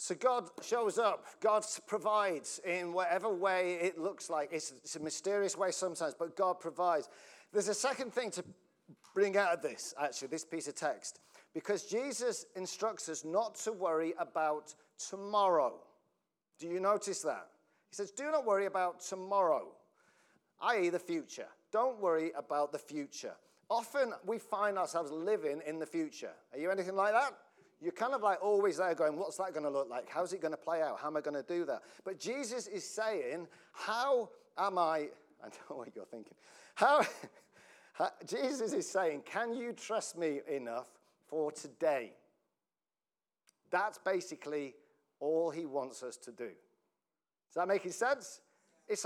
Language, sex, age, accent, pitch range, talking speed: English, male, 40-59, British, 160-215 Hz, 170 wpm